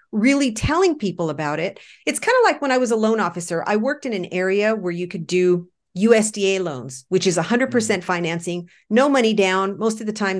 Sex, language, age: female, English, 40-59